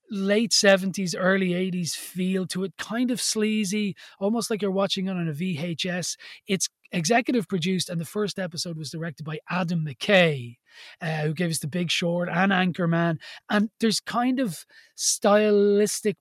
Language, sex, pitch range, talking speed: English, male, 175-210 Hz, 165 wpm